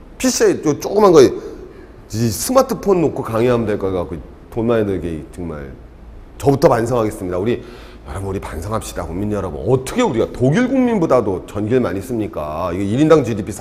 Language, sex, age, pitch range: Korean, male, 40-59, 95-140 Hz